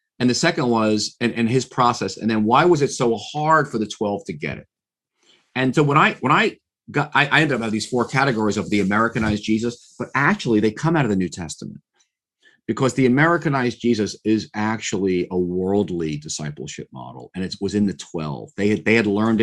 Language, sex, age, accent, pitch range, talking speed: English, male, 40-59, American, 105-145 Hz, 215 wpm